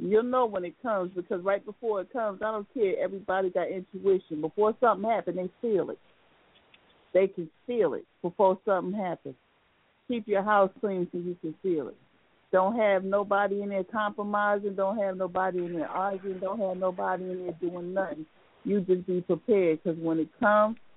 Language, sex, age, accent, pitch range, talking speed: English, female, 50-69, American, 175-205 Hz, 185 wpm